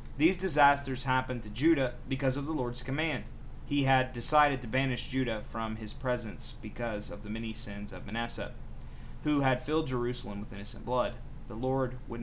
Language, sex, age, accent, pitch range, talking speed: English, male, 30-49, American, 120-140 Hz, 175 wpm